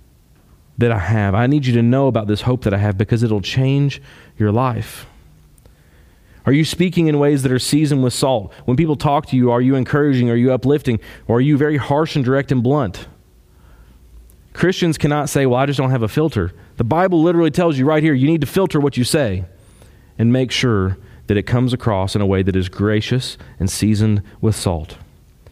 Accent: American